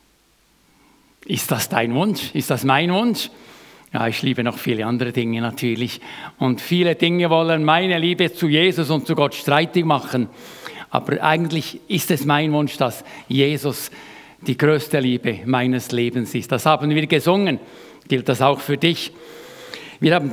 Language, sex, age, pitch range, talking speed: German, male, 60-79, 130-165 Hz, 160 wpm